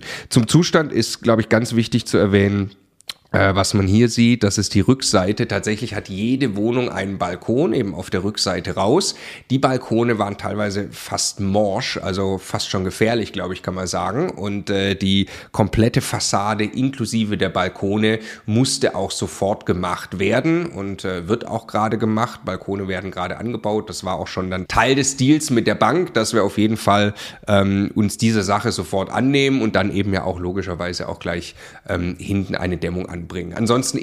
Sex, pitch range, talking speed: male, 95-115 Hz, 180 wpm